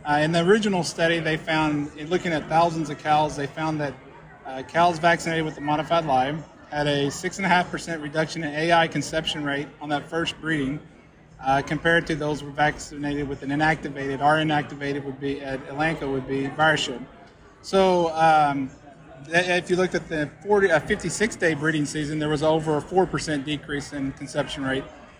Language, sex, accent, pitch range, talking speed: English, male, American, 145-170 Hz, 170 wpm